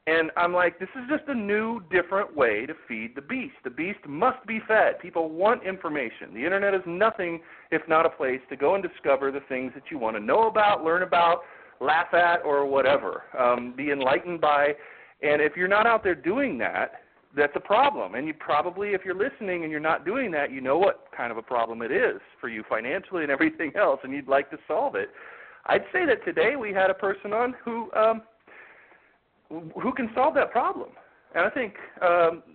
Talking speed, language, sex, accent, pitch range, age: 210 wpm, English, male, American, 145-225 Hz, 40-59